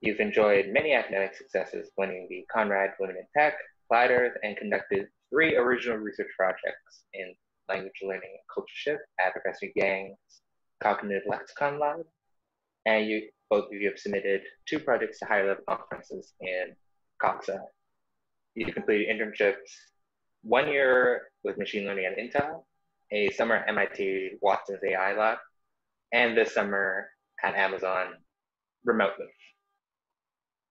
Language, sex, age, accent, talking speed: English, male, 20-39, American, 135 wpm